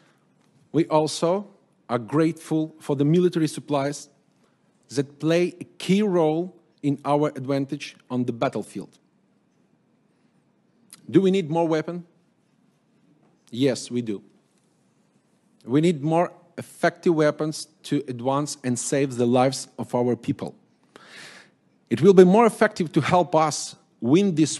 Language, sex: Russian, male